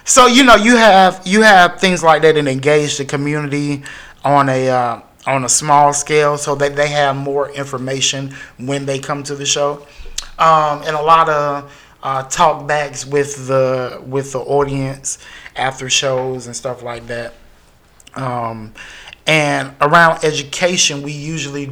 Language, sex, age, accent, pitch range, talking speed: English, male, 30-49, American, 130-145 Hz, 160 wpm